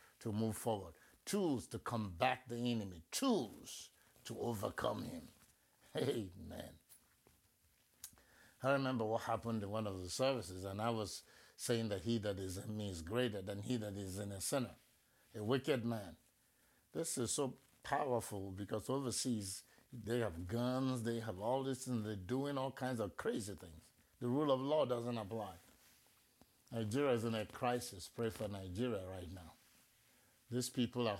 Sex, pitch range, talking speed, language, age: male, 105-130 Hz, 160 wpm, English, 60-79